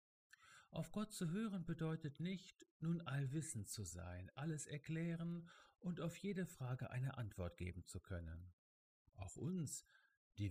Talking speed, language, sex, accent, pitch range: 135 wpm, German, male, German, 100-150 Hz